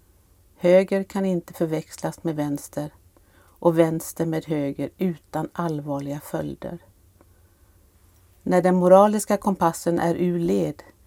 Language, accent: Swedish, native